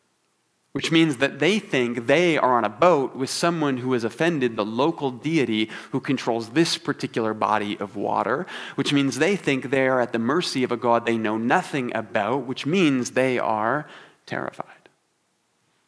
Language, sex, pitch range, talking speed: English, male, 115-145 Hz, 175 wpm